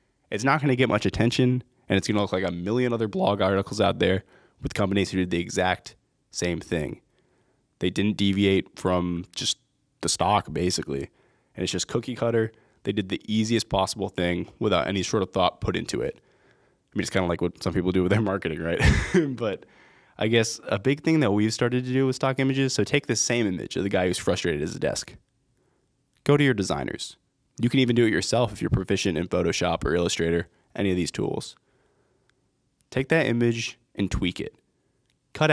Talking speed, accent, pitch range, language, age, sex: 205 wpm, American, 95-125 Hz, English, 20-39, male